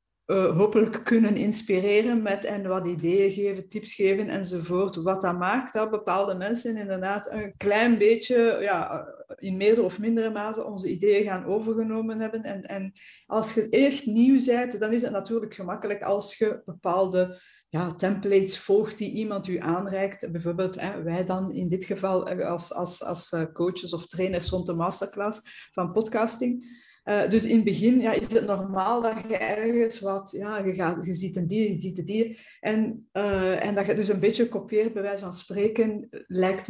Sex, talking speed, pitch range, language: female, 180 wpm, 185-220 Hz, Dutch